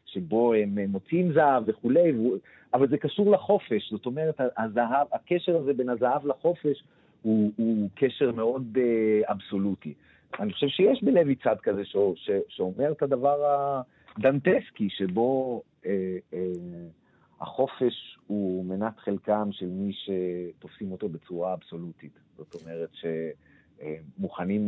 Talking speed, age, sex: 120 wpm, 40-59, male